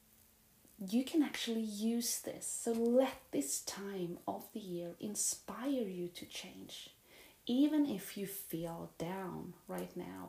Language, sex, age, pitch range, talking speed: English, female, 30-49, 175-210 Hz, 135 wpm